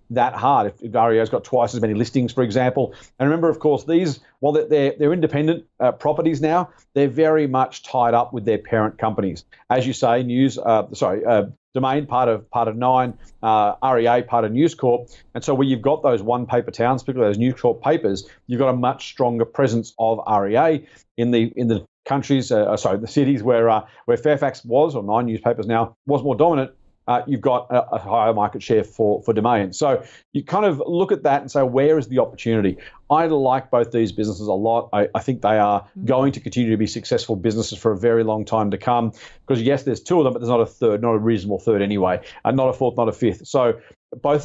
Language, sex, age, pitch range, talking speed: English, male, 40-59, 115-140 Hz, 230 wpm